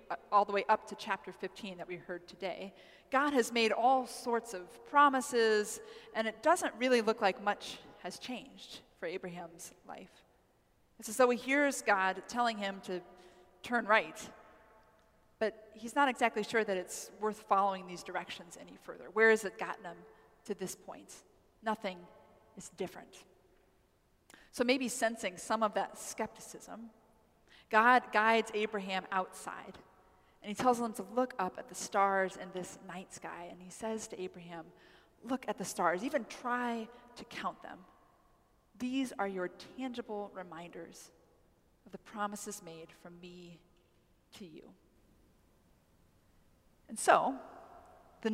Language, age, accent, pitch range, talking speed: English, 30-49, American, 190-240 Hz, 150 wpm